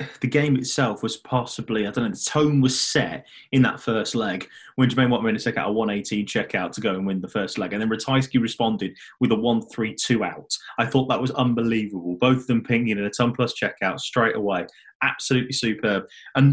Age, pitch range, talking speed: 20-39, 120-155 Hz, 215 wpm